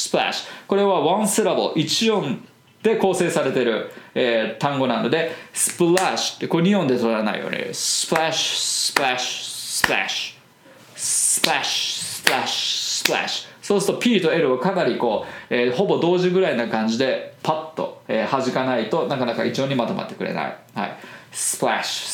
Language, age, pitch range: Japanese, 20-39, 125-155 Hz